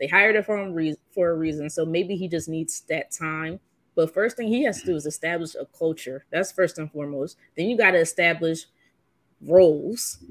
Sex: female